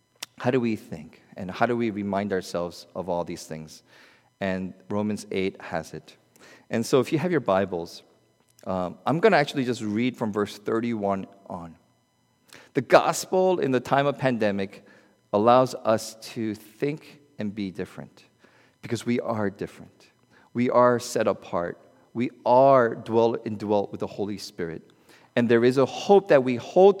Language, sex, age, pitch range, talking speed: English, male, 40-59, 100-135 Hz, 170 wpm